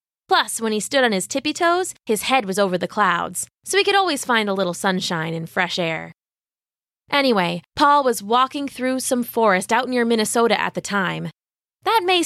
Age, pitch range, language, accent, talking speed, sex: 20-39, 195-275 Hz, English, American, 195 wpm, female